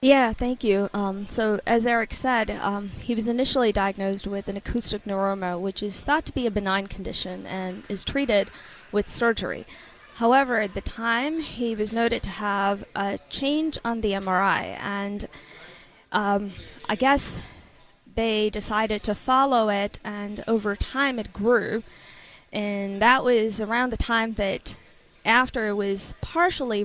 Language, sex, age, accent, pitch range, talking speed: English, female, 20-39, American, 205-240 Hz, 155 wpm